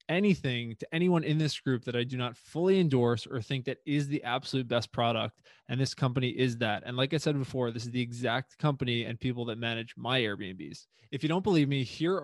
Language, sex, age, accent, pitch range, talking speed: English, male, 20-39, American, 120-145 Hz, 230 wpm